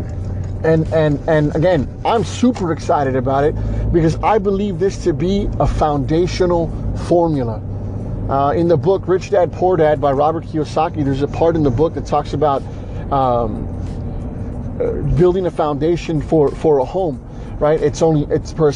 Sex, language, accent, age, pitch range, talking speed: male, English, American, 30-49, 125-170 Hz, 170 wpm